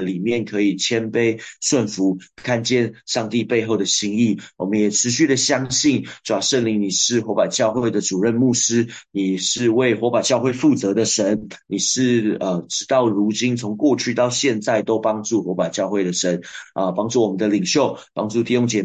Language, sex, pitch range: Chinese, male, 100-120 Hz